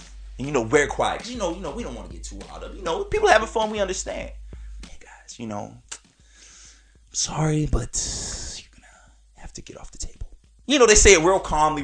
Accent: American